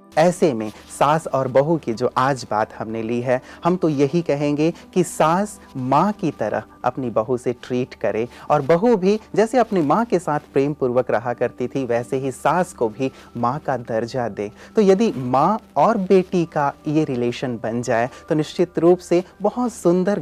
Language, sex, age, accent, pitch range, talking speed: Hindi, male, 30-49, native, 120-170 Hz, 190 wpm